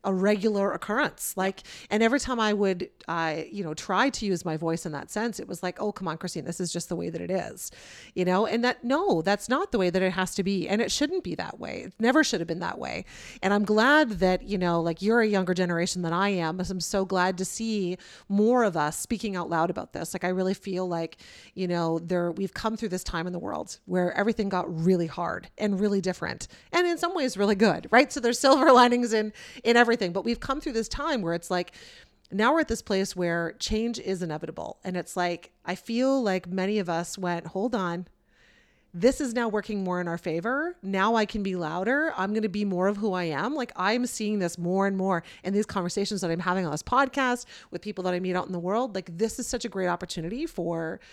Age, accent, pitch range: 30-49, American, 180-225 Hz